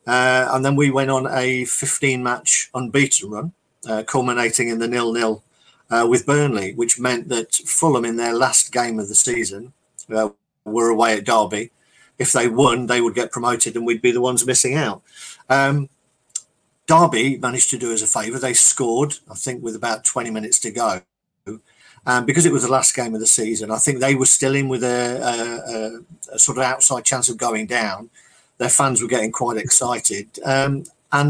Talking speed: 195 wpm